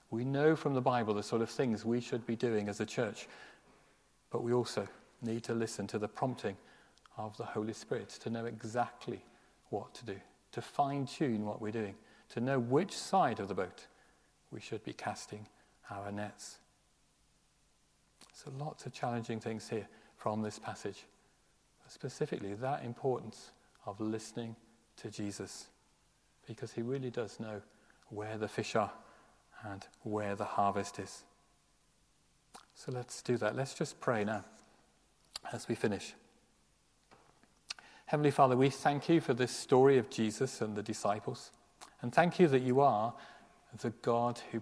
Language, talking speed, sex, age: English, 155 wpm, male, 40-59